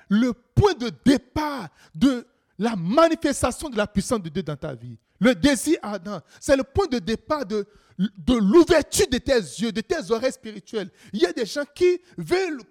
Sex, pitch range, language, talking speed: male, 195-315 Hz, French, 190 wpm